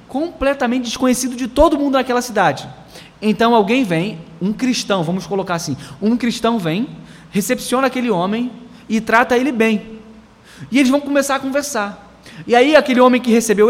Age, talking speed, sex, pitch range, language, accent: 20-39, 160 wpm, male, 190-255 Hz, Portuguese, Brazilian